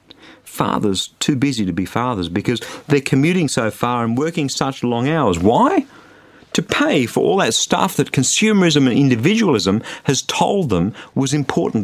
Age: 50-69